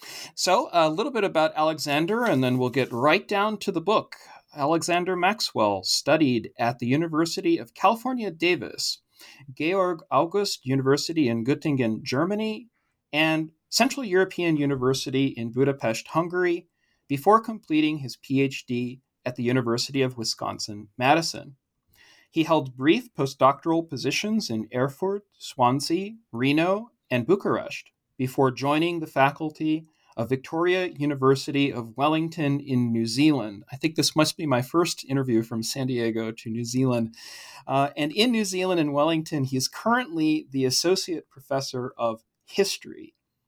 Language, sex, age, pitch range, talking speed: English, male, 40-59, 130-185 Hz, 135 wpm